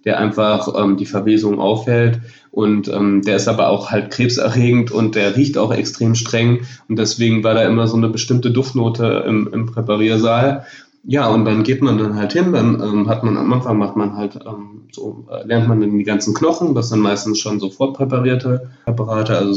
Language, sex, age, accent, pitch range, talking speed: German, male, 20-39, German, 105-120 Hz, 200 wpm